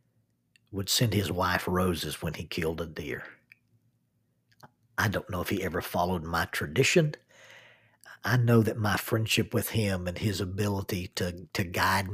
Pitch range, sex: 95-120 Hz, male